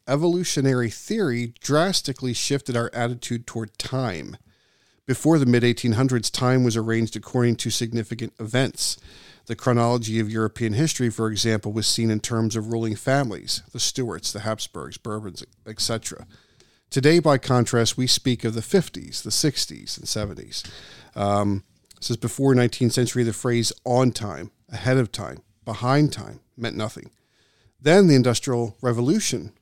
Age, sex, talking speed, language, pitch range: 40-59, male, 140 wpm, English, 115-135 Hz